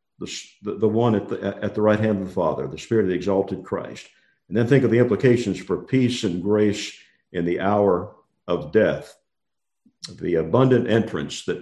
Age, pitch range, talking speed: 50-69, 95-120 Hz, 185 wpm